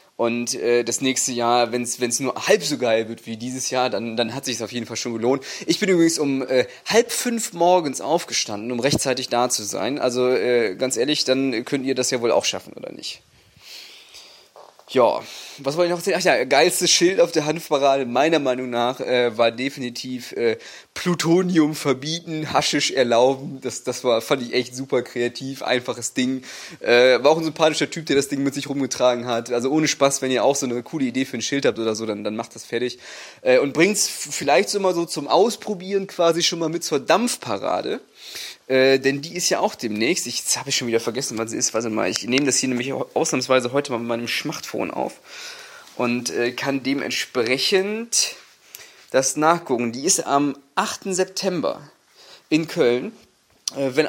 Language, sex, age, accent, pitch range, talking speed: English, male, 20-39, German, 125-160 Hz, 200 wpm